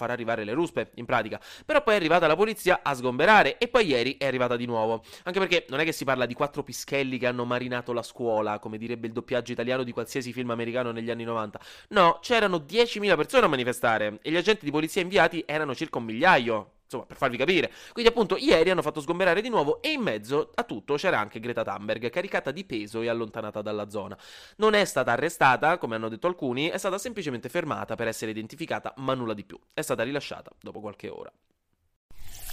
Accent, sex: native, male